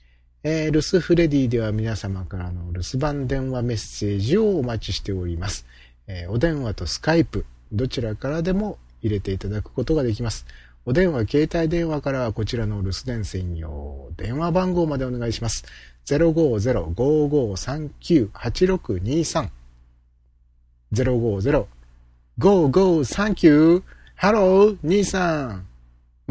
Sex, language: male, Japanese